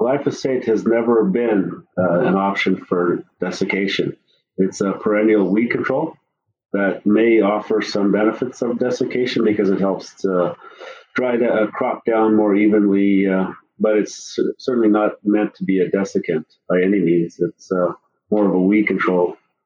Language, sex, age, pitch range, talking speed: English, male, 40-59, 95-110 Hz, 160 wpm